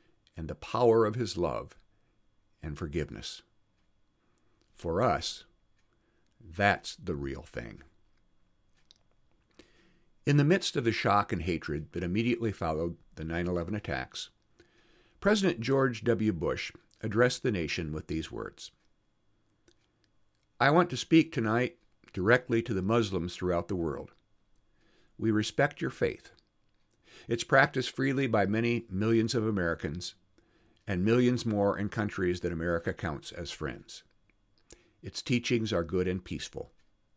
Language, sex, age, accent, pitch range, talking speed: English, male, 60-79, American, 90-125 Hz, 125 wpm